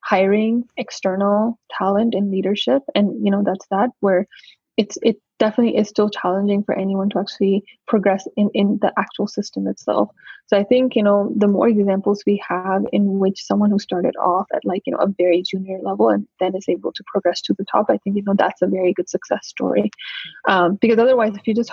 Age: 20-39